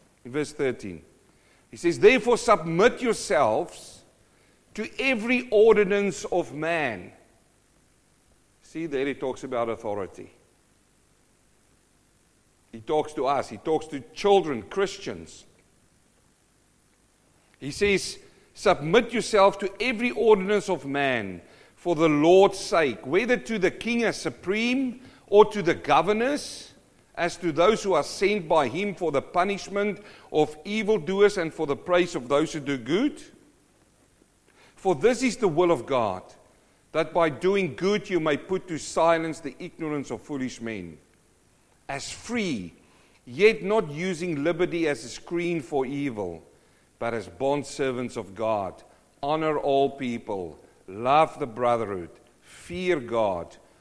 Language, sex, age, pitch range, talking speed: English, male, 50-69, 140-205 Hz, 130 wpm